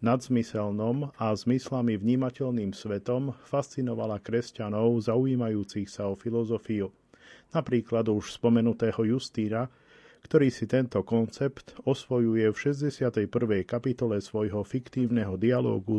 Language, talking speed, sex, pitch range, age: Slovak, 100 wpm, male, 105-125 Hz, 40-59